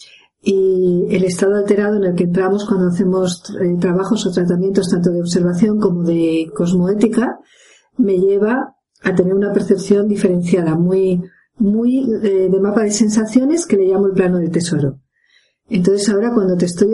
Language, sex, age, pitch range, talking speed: Spanish, female, 50-69, 185-220 Hz, 165 wpm